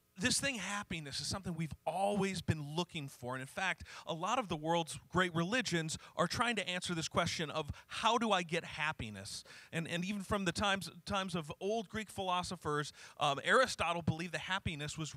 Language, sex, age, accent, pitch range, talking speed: English, male, 40-59, American, 140-185 Hz, 195 wpm